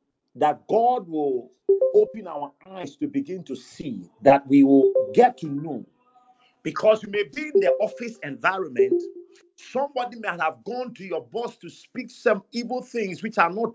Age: 50-69